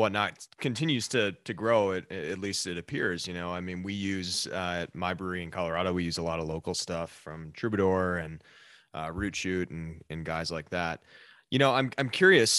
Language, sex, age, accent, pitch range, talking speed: English, male, 20-39, American, 85-110 Hz, 215 wpm